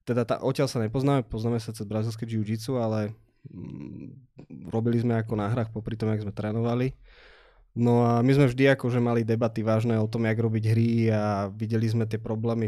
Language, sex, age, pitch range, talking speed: Slovak, male, 20-39, 110-120 Hz, 190 wpm